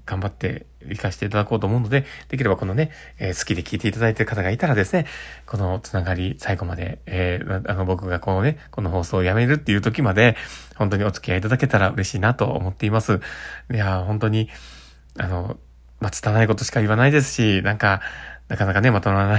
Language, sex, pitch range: Japanese, male, 100-135 Hz